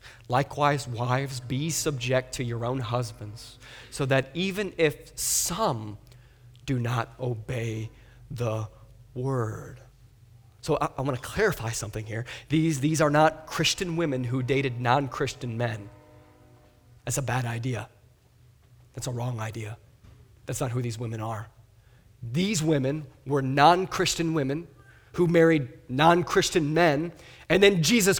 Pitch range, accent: 120-160 Hz, American